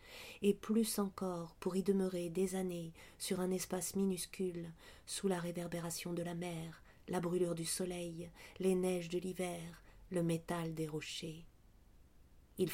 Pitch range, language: 160-190 Hz, French